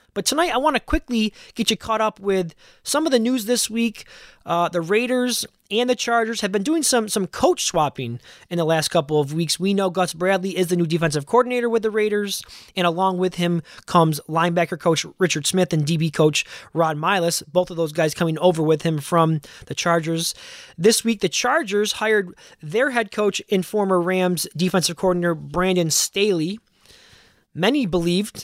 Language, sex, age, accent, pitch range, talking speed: English, male, 20-39, American, 160-215 Hz, 190 wpm